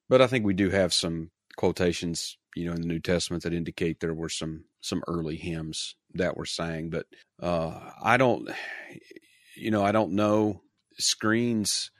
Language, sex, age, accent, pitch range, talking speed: English, male, 40-59, American, 85-95 Hz, 175 wpm